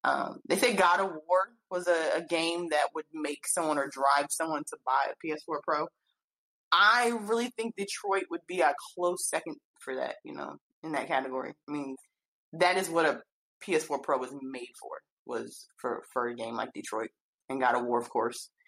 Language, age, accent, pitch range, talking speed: English, 20-39, American, 150-215 Hz, 200 wpm